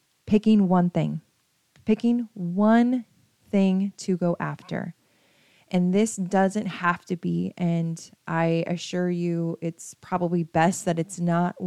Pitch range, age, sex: 170-200 Hz, 20-39, female